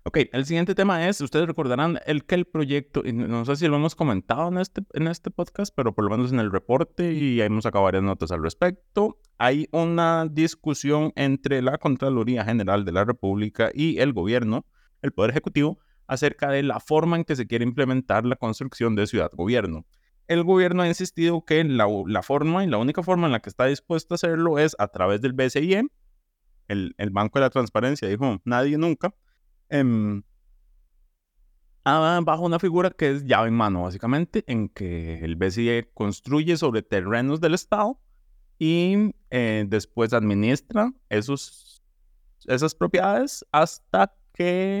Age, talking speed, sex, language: 30-49, 170 wpm, male, Spanish